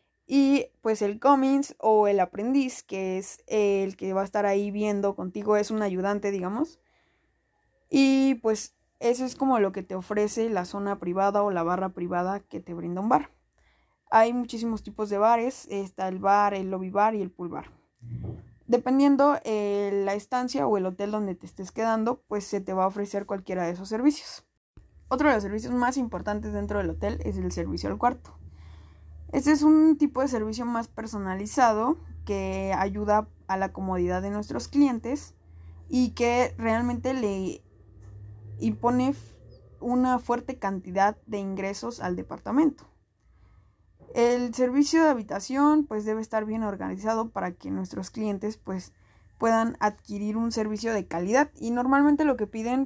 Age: 20-39